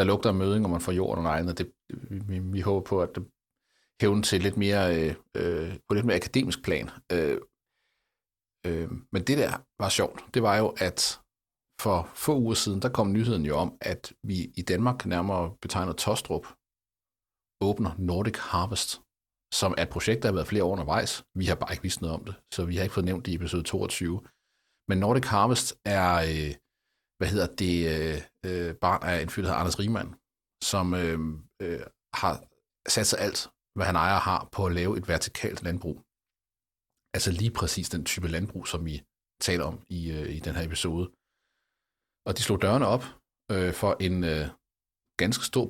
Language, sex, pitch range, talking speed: Danish, male, 85-105 Hz, 180 wpm